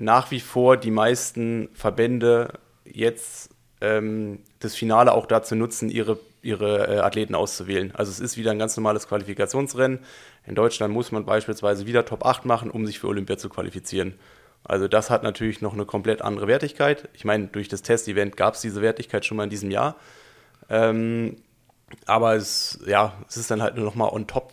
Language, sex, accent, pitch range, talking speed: German, male, German, 105-125 Hz, 185 wpm